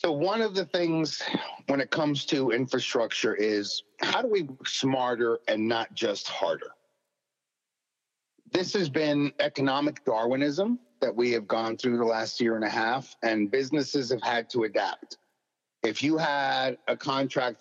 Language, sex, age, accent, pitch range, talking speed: English, male, 40-59, American, 120-160 Hz, 160 wpm